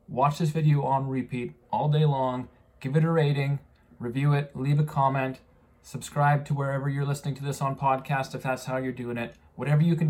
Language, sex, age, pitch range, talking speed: English, male, 20-39, 115-135 Hz, 210 wpm